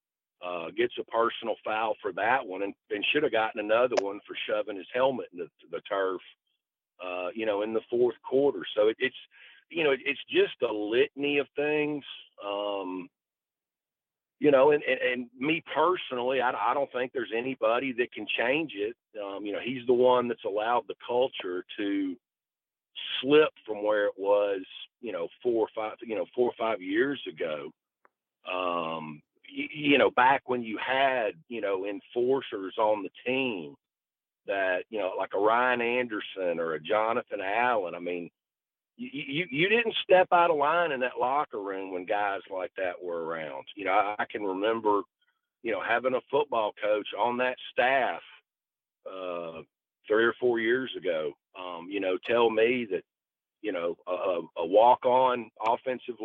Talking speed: 175 wpm